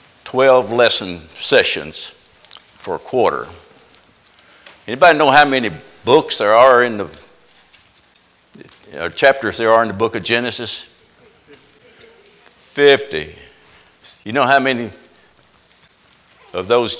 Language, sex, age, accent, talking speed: English, male, 60-79, American, 115 wpm